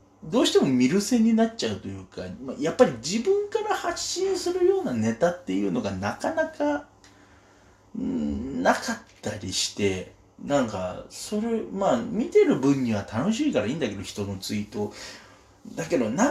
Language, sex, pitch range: Japanese, male, 95-150 Hz